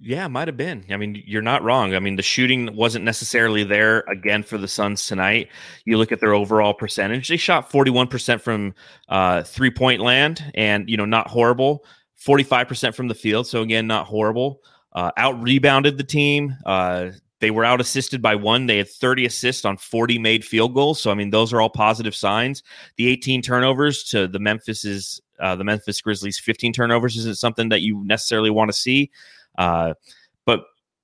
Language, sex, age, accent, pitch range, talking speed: English, male, 30-49, American, 105-130 Hz, 190 wpm